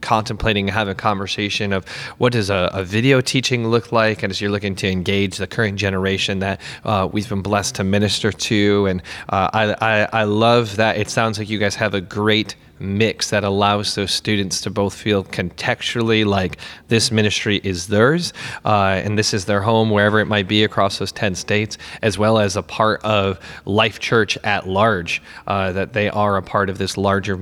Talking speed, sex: 200 wpm, male